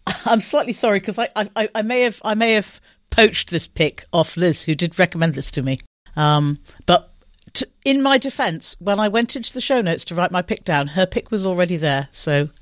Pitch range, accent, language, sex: 145-190 Hz, British, English, female